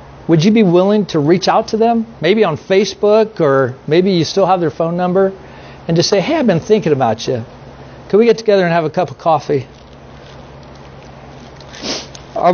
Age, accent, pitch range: 50-69, American, 140-190 Hz